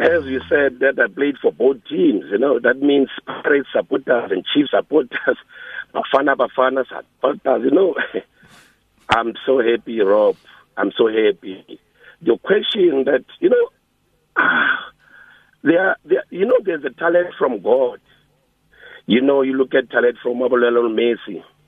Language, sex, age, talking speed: English, male, 50-69, 150 wpm